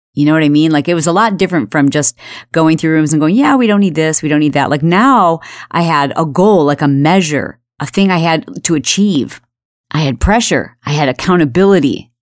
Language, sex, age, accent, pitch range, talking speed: English, female, 40-59, American, 145-210 Hz, 235 wpm